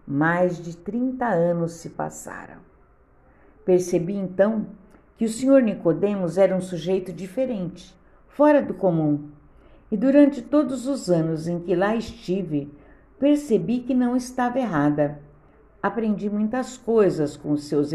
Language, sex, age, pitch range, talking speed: Portuguese, female, 50-69, 155-245 Hz, 130 wpm